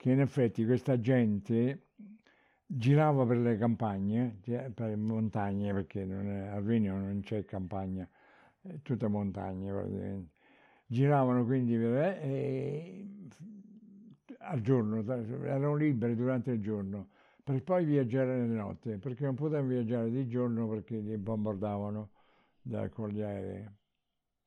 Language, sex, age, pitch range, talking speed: Italian, male, 60-79, 105-130 Hz, 125 wpm